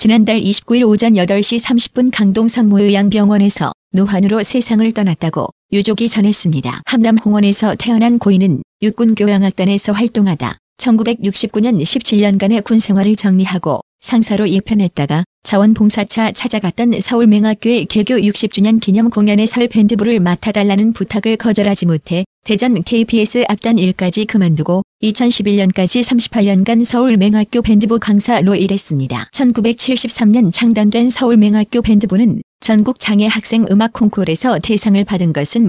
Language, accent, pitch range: Korean, native, 200-230 Hz